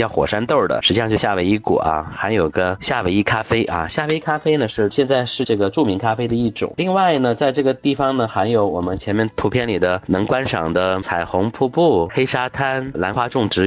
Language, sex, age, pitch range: Chinese, male, 30-49, 95-125 Hz